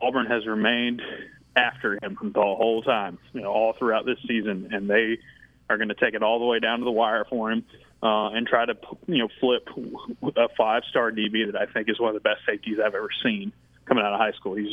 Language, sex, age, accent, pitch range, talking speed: English, male, 20-39, American, 110-130 Hz, 235 wpm